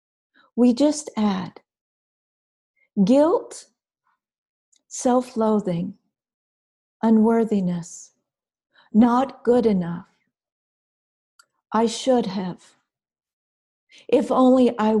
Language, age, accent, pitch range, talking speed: English, 50-69, American, 205-240 Hz, 65 wpm